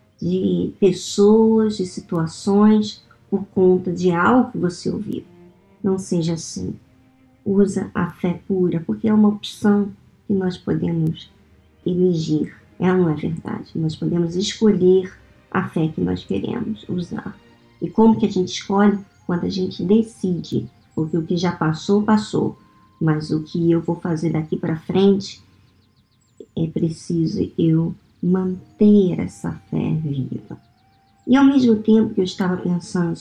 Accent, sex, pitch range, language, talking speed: Brazilian, male, 160-205 Hz, Portuguese, 145 wpm